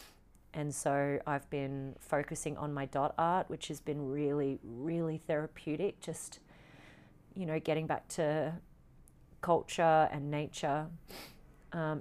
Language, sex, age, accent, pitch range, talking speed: English, female, 30-49, Australian, 140-160 Hz, 125 wpm